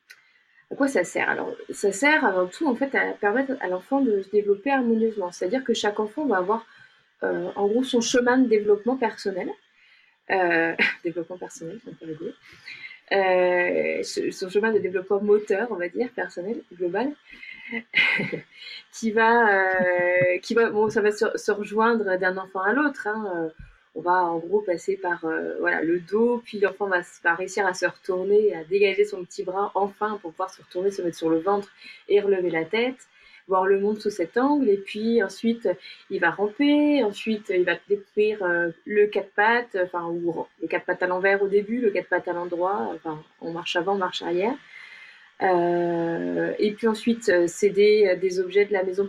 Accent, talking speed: French, 180 wpm